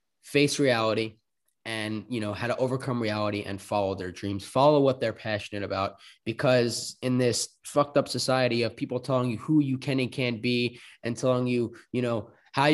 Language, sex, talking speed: English, male, 190 wpm